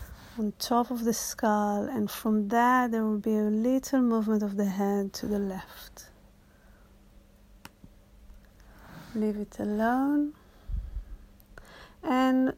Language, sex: English, female